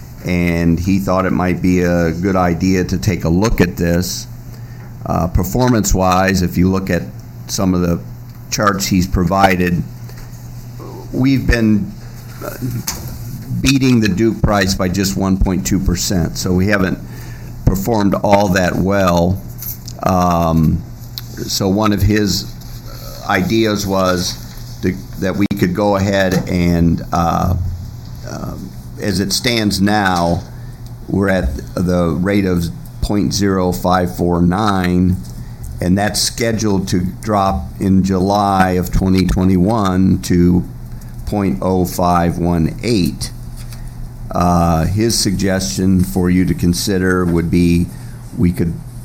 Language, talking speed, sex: English, 110 wpm, male